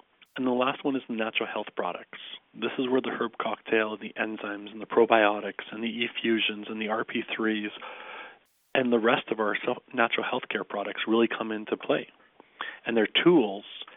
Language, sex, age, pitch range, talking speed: English, male, 40-59, 110-125 Hz, 185 wpm